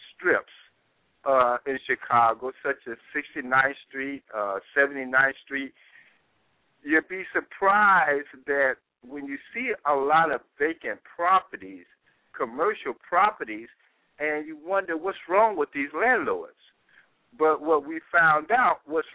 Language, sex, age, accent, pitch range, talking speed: English, male, 60-79, American, 130-185 Hz, 120 wpm